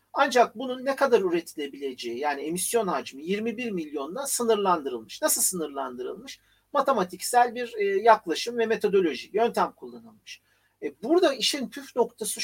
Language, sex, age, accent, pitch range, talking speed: Turkish, male, 50-69, native, 185-255 Hz, 120 wpm